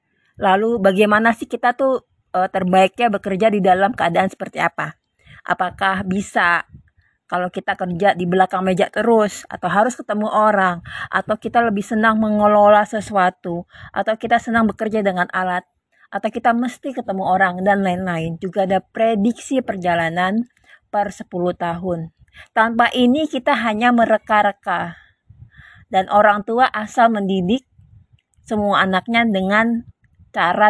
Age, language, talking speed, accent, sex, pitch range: 20-39, Indonesian, 125 wpm, native, female, 185-230 Hz